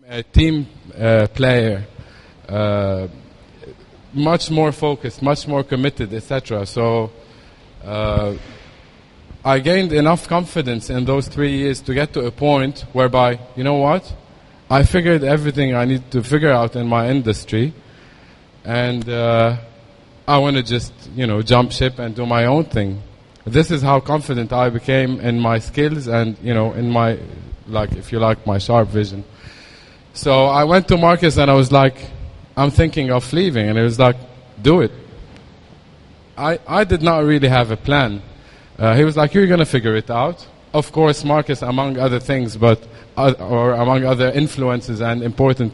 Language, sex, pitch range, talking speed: English, male, 115-145 Hz, 170 wpm